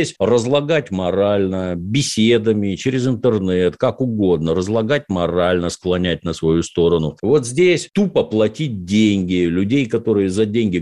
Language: Russian